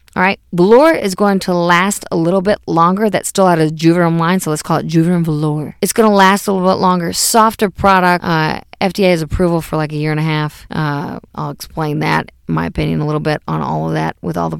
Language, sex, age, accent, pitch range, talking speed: English, female, 40-59, American, 160-190 Hz, 245 wpm